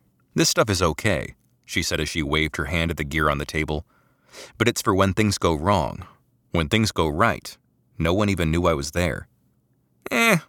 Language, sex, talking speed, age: English, male, 205 wpm, 30-49